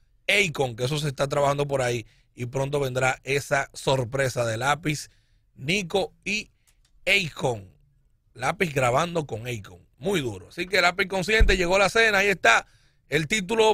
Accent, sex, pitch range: American, male, 135-195 Hz